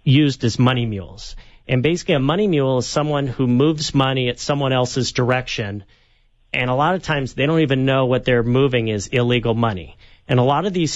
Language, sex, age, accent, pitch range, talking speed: English, male, 40-59, American, 120-145 Hz, 210 wpm